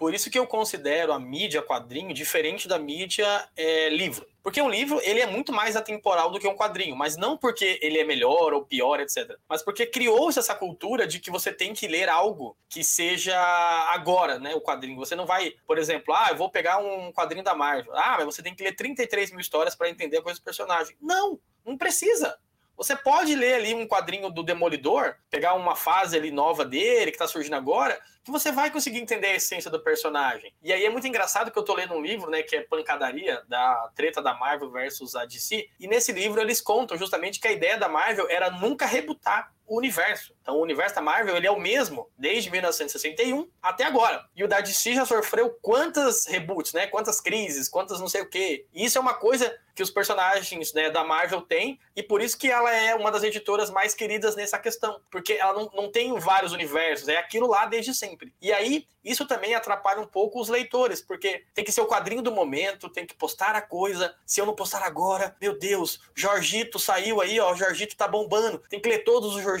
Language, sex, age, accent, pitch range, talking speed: Portuguese, male, 20-39, Brazilian, 190-270 Hz, 220 wpm